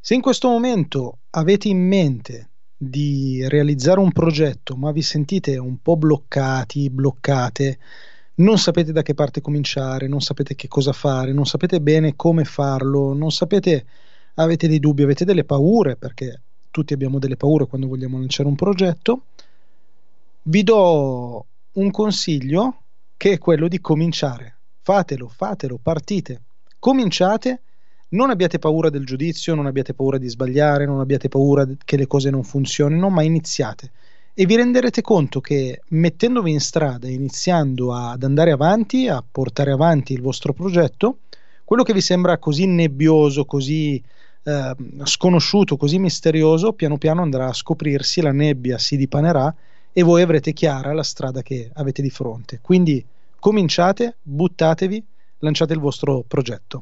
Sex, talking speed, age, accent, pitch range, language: male, 150 wpm, 30-49, native, 135-175 Hz, Italian